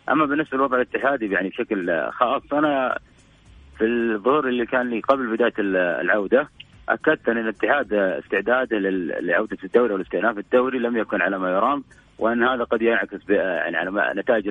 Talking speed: 150 wpm